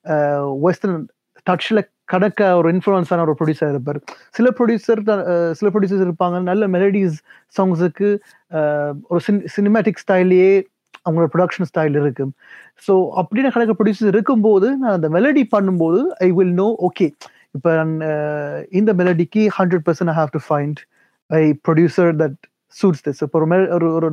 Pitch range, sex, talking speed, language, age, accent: 150-185 Hz, male, 130 wpm, Tamil, 20-39, native